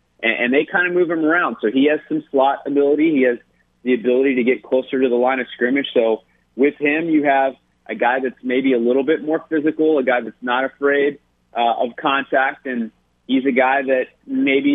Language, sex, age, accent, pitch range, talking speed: English, male, 30-49, American, 110-140 Hz, 215 wpm